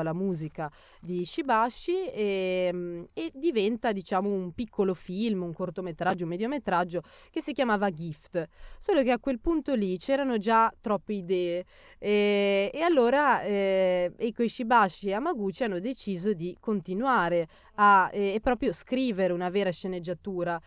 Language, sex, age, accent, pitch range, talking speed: Italian, female, 20-39, native, 180-210 Hz, 140 wpm